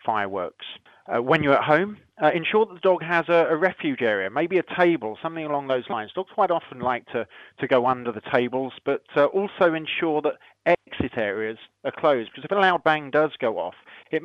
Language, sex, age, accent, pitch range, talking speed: English, male, 30-49, British, 130-175 Hz, 215 wpm